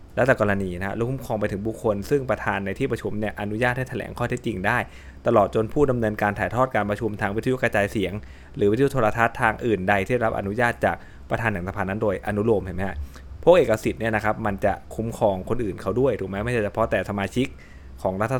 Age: 20-39